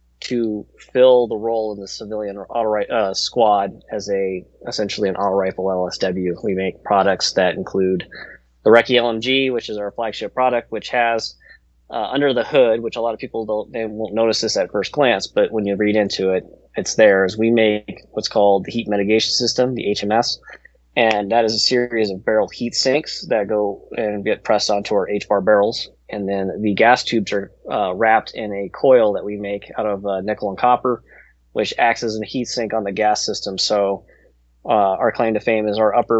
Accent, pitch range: American, 100-115 Hz